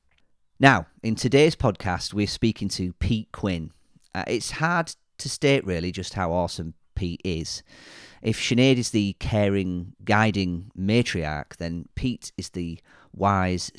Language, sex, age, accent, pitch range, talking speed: English, male, 40-59, British, 90-110 Hz, 140 wpm